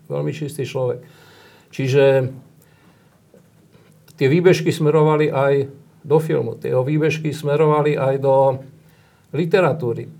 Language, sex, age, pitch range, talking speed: Slovak, male, 50-69, 125-145 Hz, 95 wpm